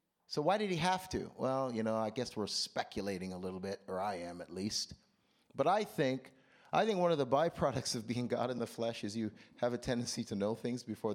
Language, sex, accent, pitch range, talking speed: Danish, male, American, 110-180 Hz, 240 wpm